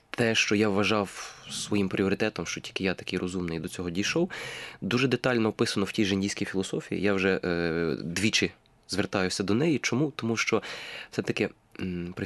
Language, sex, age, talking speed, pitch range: Ukrainian, male, 20-39, 165 wpm, 90-115 Hz